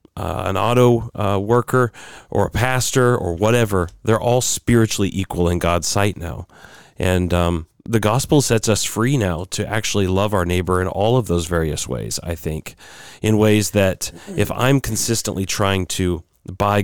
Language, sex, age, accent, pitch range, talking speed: English, male, 40-59, American, 90-110 Hz, 170 wpm